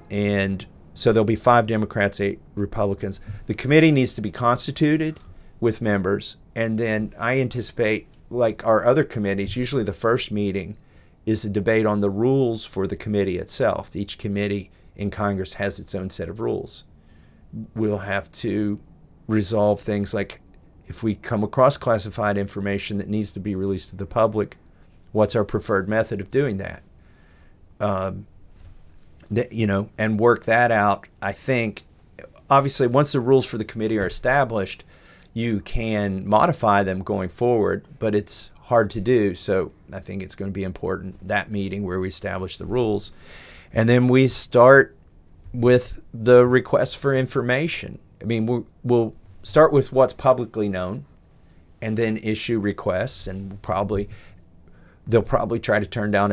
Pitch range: 95-115 Hz